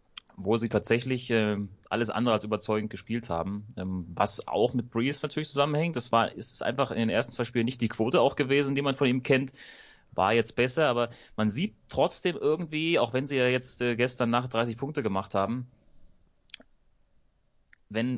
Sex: male